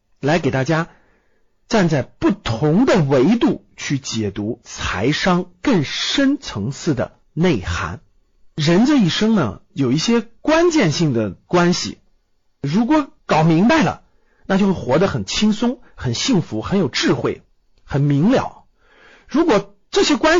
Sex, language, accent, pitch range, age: male, Chinese, native, 125-205 Hz, 50-69